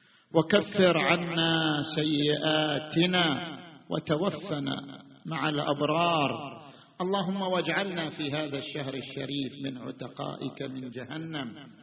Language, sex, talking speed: Arabic, male, 80 wpm